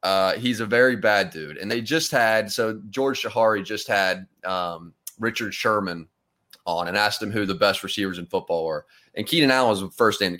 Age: 30-49